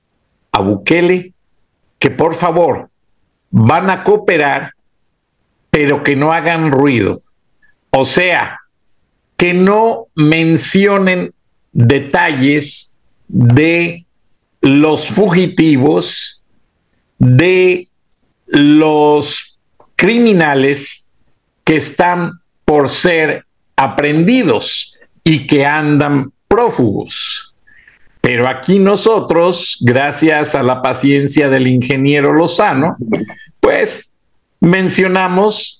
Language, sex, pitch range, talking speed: Spanish, male, 140-185 Hz, 75 wpm